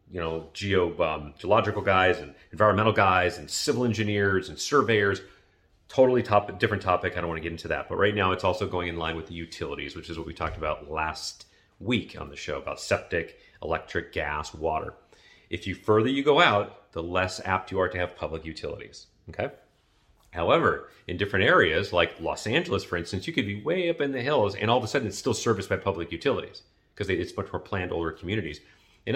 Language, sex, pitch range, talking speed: English, male, 85-110 Hz, 210 wpm